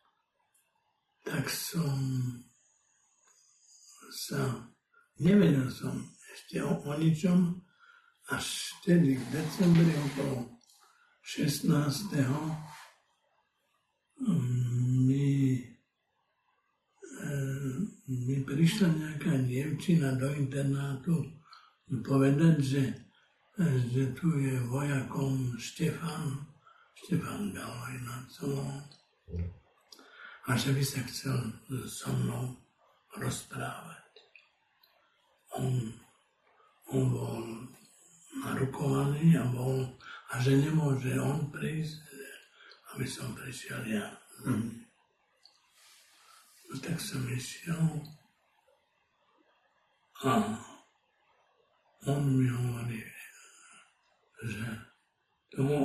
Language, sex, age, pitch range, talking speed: Slovak, male, 60-79, 130-165 Hz, 70 wpm